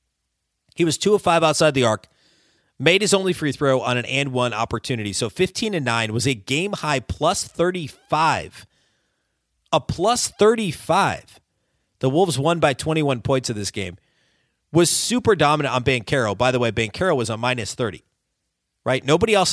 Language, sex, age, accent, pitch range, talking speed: English, male, 30-49, American, 115-150 Hz, 170 wpm